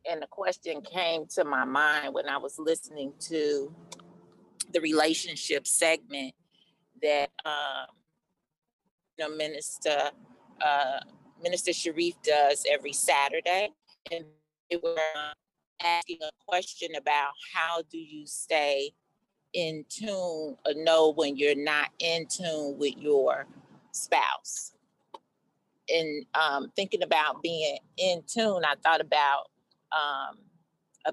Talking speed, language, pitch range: 120 wpm, English, 155-195 Hz